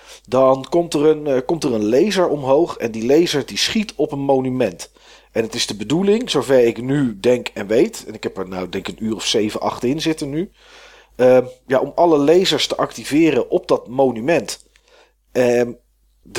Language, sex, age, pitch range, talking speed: Dutch, male, 40-59, 115-155 Hz, 185 wpm